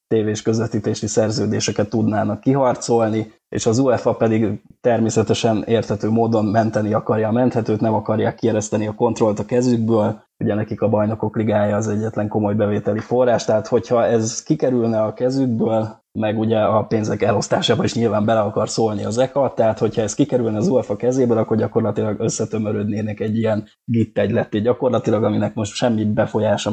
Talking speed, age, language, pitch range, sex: 155 wpm, 20-39, Hungarian, 105-115 Hz, male